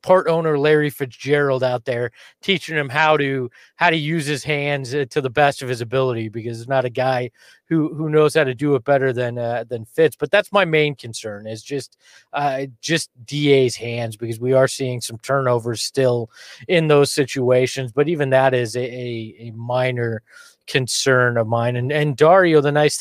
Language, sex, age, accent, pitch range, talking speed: English, male, 30-49, American, 125-150 Hz, 195 wpm